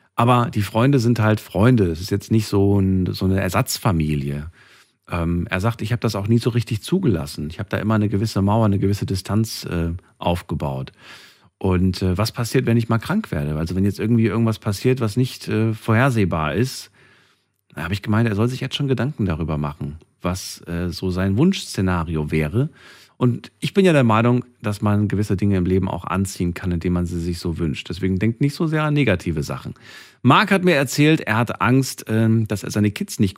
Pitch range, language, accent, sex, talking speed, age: 90-120 Hz, German, German, male, 210 wpm, 40-59